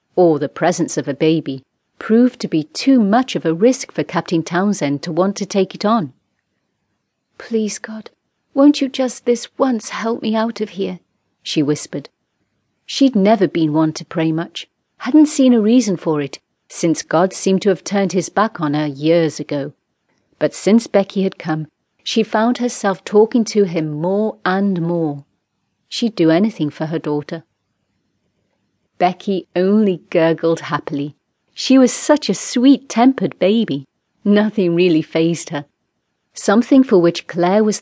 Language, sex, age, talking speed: English, female, 40-59, 160 wpm